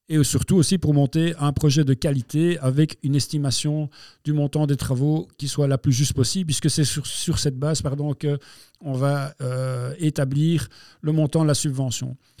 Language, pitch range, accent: French, 140-165 Hz, French